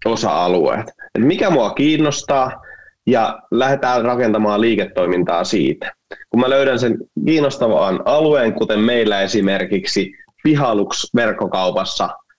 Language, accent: Finnish, native